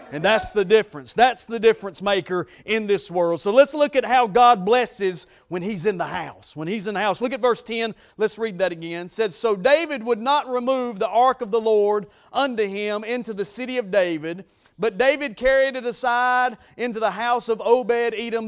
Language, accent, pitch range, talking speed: English, American, 215-270 Hz, 210 wpm